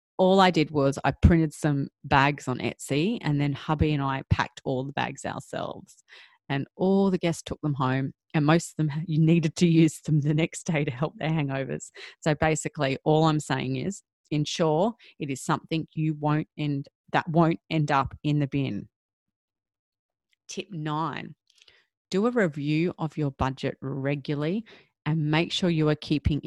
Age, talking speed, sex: 30-49, 175 wpm, female